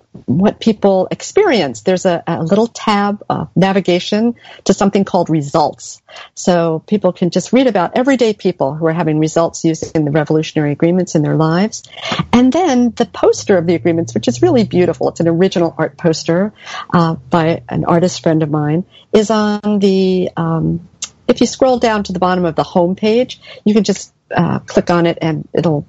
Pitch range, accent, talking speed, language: 165-205 Hz, American, 190 wpm, English